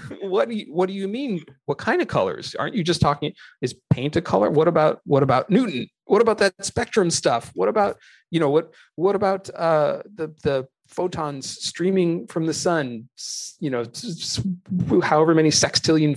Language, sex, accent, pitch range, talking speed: English, male, American, 120-165 Hz, 180 wpm